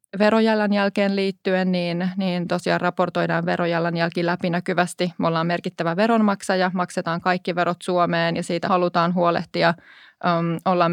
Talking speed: 125 wpm